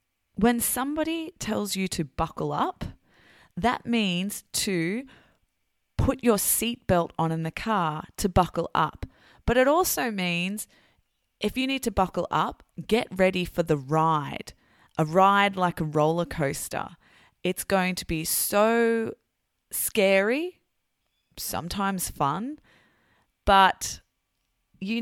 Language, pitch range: English, 165-220 Hz